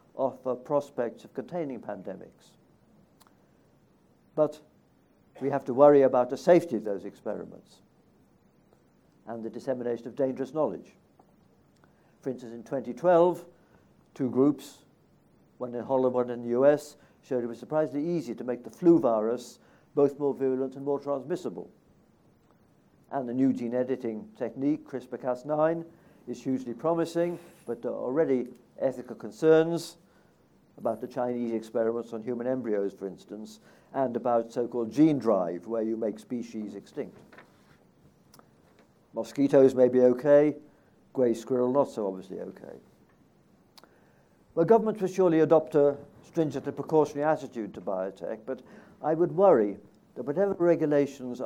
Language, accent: English, British